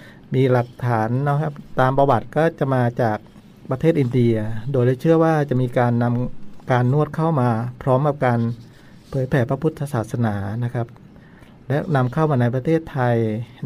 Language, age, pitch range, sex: Thai, 60-79, 120-155 Hz, male